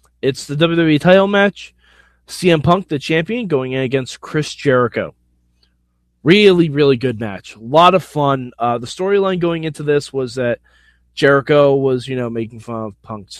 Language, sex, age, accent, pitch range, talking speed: English, male, 20-39, American, 115-170 Hz, 170 wpm